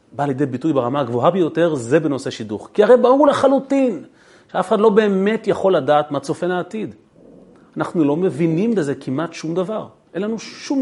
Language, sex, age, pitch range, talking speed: Hebrew, male, 40-59, 130-210 Hz, 175 wpm